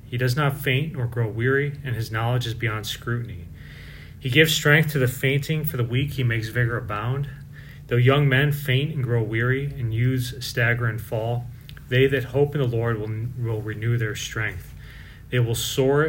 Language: English